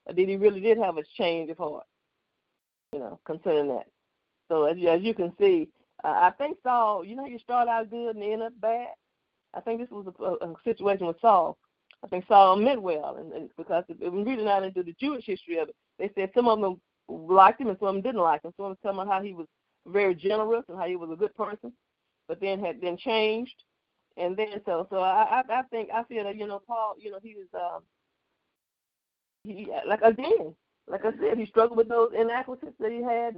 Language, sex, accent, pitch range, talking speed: English, female, American, 180-235 Hz, 235 wpm